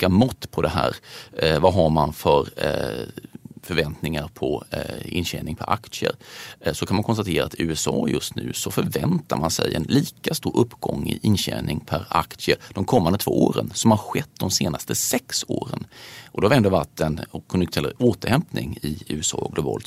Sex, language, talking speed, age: male, Swedish, 175 wpm, 30-49